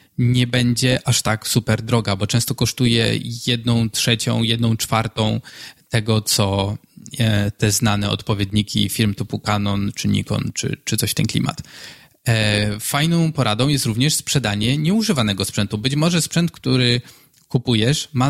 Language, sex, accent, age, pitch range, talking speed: Polish, male, native, 20-39, 110-135 Hz, 135 wpm